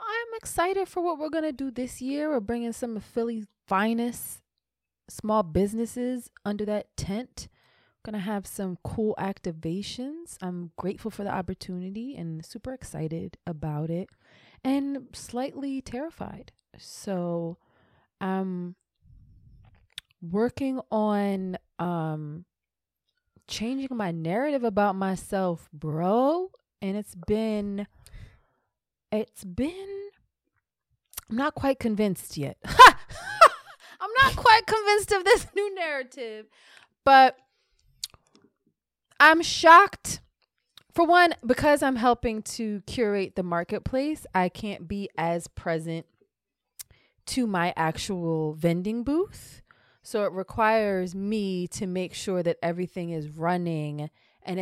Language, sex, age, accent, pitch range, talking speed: English, female, 20-39, American, 175-265 Hz, 110 wpm